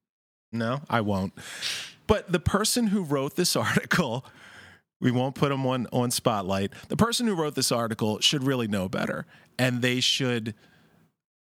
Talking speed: 160 wpm